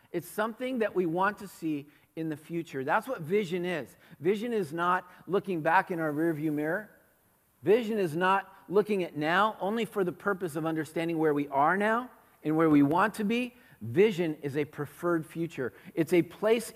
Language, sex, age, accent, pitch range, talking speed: English, male, 50-69, American, 160-210 Hz, 190 wpm